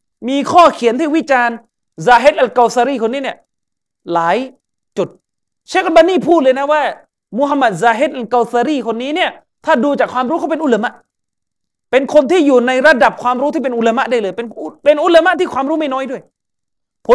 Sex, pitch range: male, 200-285 Hz